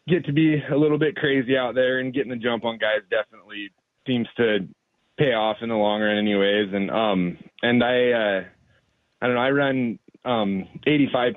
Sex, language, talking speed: male, English, 195 wpm